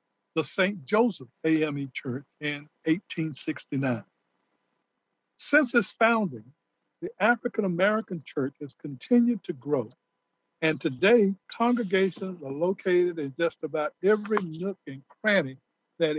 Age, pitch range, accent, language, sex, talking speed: 60-79, 150-200 Hz, American, English, male, 110 wpm